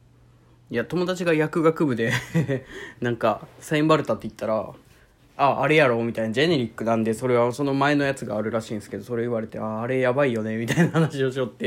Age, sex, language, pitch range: 20-39, male, Japanese, 115-140 Hz